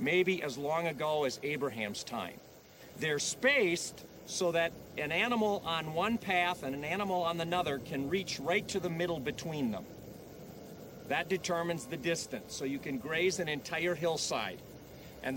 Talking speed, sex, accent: 160 wpm, male, American